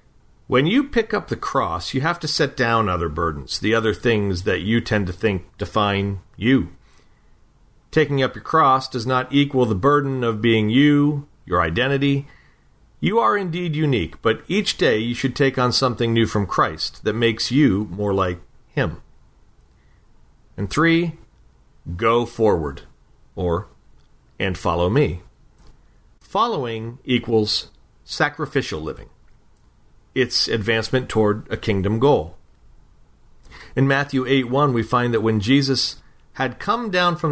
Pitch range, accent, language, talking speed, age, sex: 105-135 Hz, American, English, 145 wpm, 40-59, male